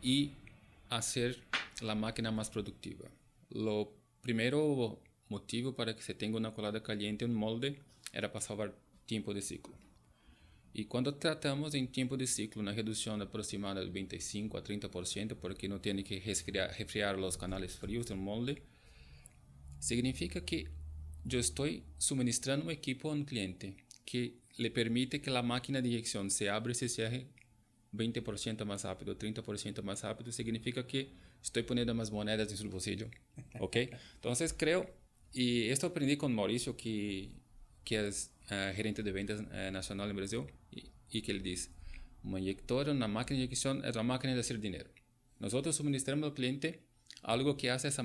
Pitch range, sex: 100-125 Hz, male